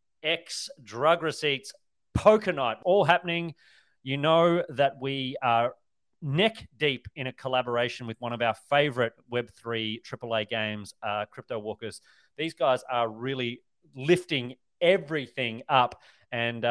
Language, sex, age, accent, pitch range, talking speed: English, male, 30-49, Australian, 115-145 Hz, 130 wpm